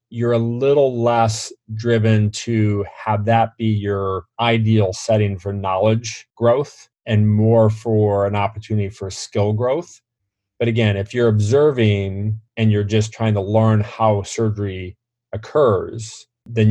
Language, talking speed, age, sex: English, 135 wpm, 30-49, male